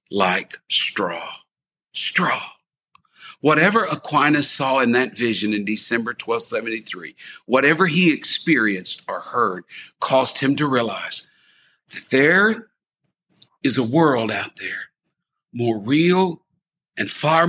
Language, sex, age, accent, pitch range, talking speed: English, male, 50-69, American, 120-180 Hz, 110 wpm